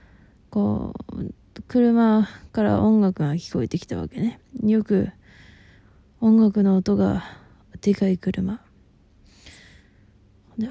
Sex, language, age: female, Japanese, 20-39